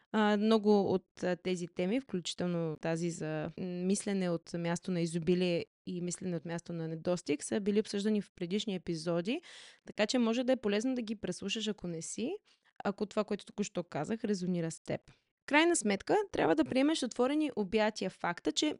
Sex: female